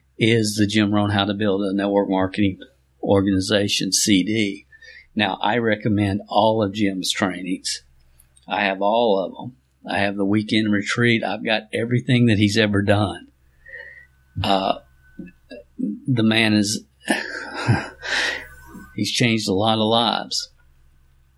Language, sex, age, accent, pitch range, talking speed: English, male, 50-69, American, 100-110 Hz, 130 wpm